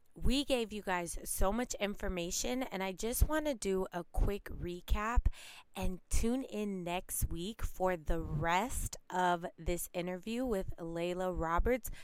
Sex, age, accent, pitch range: female, 20-39, American, 180-230 Hz